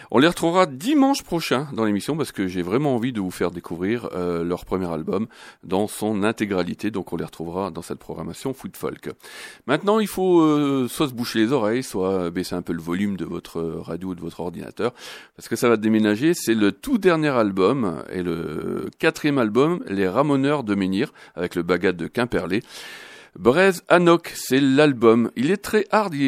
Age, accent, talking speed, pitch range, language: 40-59, French, 200 wpm, 90-150 Hz, French